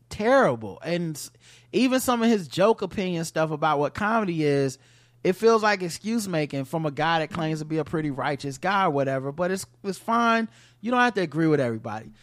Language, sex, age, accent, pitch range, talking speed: English, male, 30-49, American, 140-195 Hz, 200 wpm